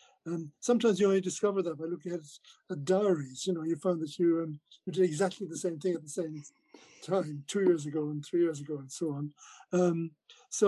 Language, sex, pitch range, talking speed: English, male, 155-190 Hz, 220 wpm